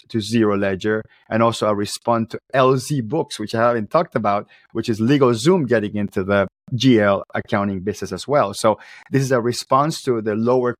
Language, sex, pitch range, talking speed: English, male, 115-145 Hz, 190 wpm